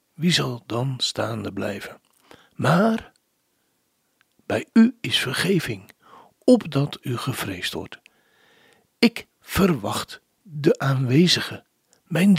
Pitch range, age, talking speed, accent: 120-190 Hz, 60-79, 90 wpm, Dutch